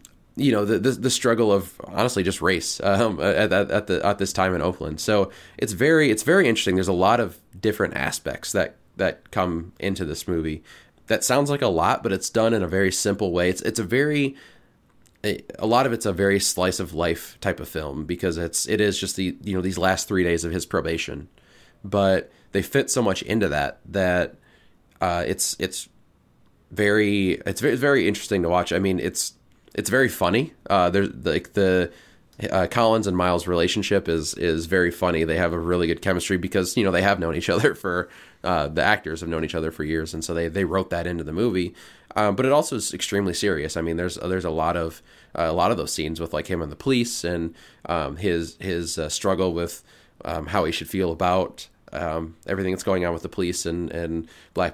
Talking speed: 225 wpm